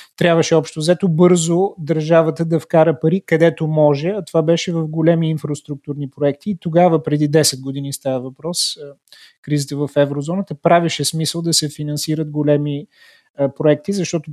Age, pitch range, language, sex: 30-49, 145-170 Hz, Bulgarian, male